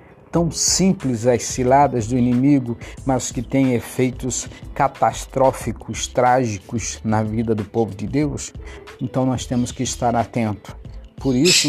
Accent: Brazilian